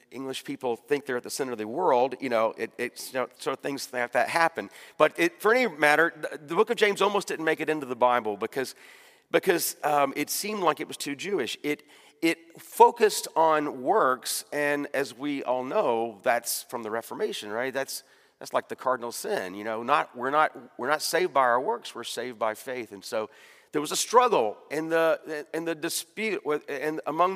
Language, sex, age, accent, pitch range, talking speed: English, male, 40-59, American, 125-165 Hz, 215 wpm